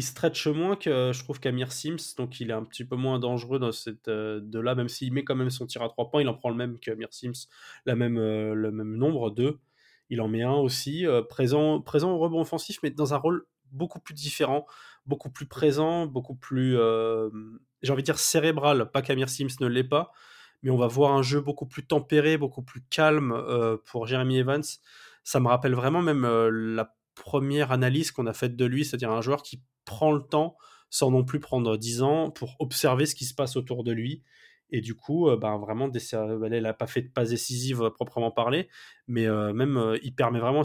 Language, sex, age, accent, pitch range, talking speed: French, male, 20-39, French, 115-145 Hz, 230 wpm